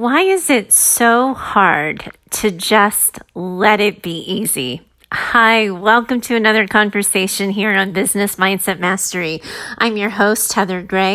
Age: 30-49